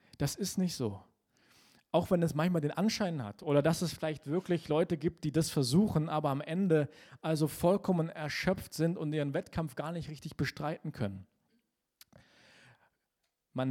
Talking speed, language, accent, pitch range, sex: 160 wpm, German, German, 145-185 Hz, male